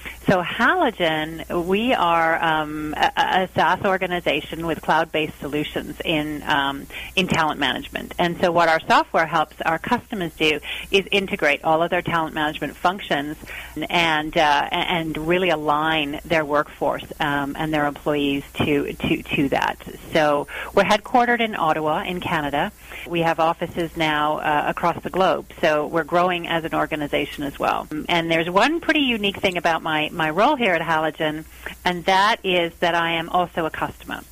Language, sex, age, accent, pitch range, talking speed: English, female, 40-59, American, 155-180 Hz, 165 wpm